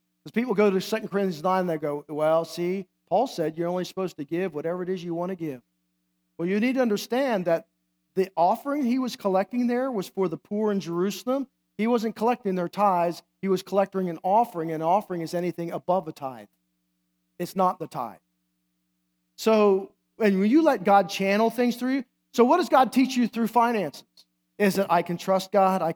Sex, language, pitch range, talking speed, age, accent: male, English, 170-230 Hz, 205 wpm, 50-69, American